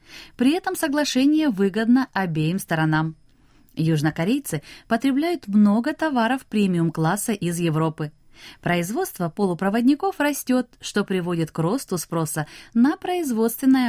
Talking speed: 100 wpm